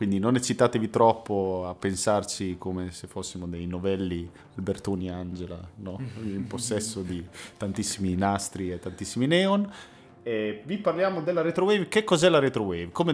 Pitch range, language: 90-120 Hz, Italian